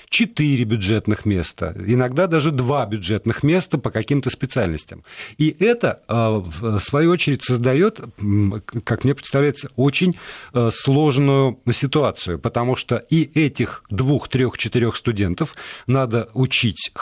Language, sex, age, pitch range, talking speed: Russian, male, 50-69, 105-145 Hz, 110 wpm